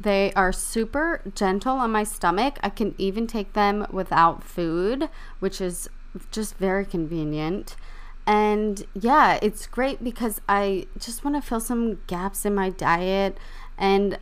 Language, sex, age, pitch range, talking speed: English, female, 20-39, 180-215 Hz, 145 wpm